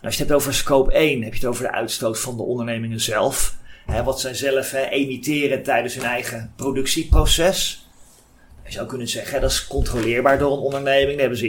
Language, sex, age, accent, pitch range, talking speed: Dutch, male, 30-49, Dutch, 120-145 Hz, 200 wpm